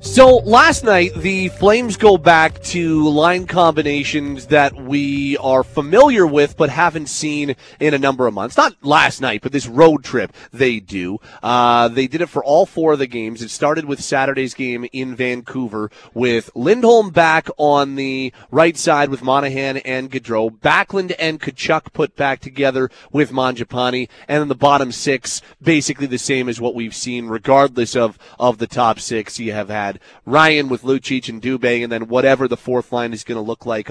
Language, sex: English, male